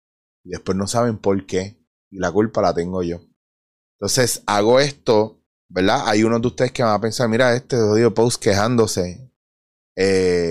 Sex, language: male, Spanish